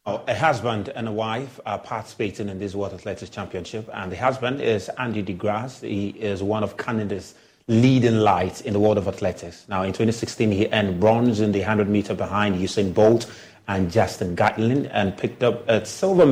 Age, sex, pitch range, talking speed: 30-49, male, 105-135 Hz, 190 wpm